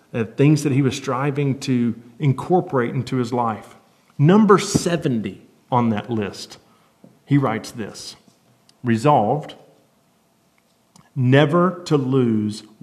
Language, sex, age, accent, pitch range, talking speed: English, male, 40-59, American, 120-160 Hz, 110 wpm